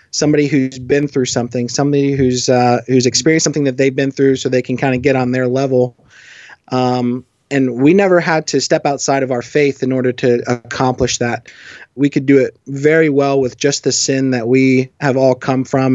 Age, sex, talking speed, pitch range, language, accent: 20-39, male, 210 wpm, 130-150 Hz, English, American